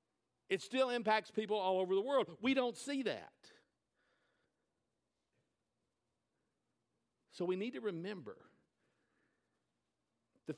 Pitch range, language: 140-195 Hz, English